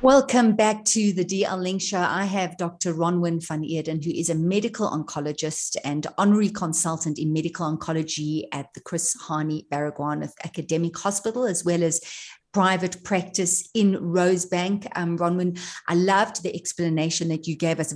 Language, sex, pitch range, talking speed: English, female, 165-205 Hz, 165 wpm